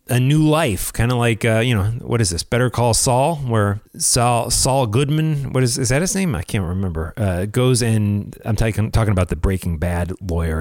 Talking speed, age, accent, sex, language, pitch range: 220 wpm, 30-49, American, male, English, 90-120 Hz